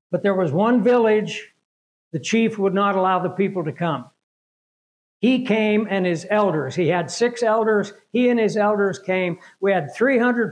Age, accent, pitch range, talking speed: 60-79, American, 170-210 Hz, 175 wpm